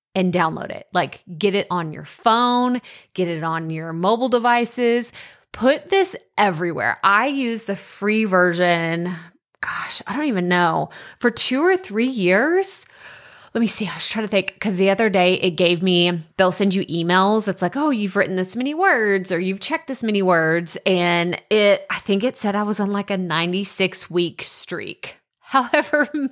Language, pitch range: English, 175-220 Hz